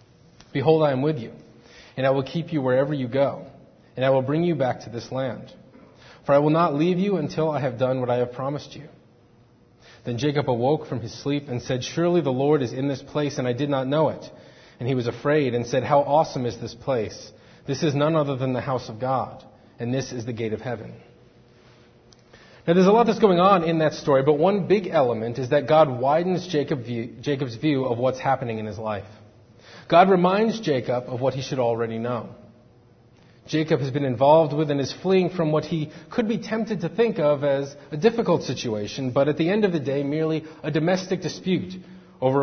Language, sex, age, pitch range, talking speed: English, male, 30-49, 125-160 Hz, 215 wpm